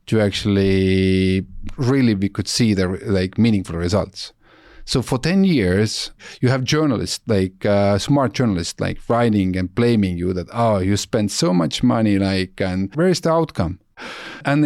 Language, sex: English, male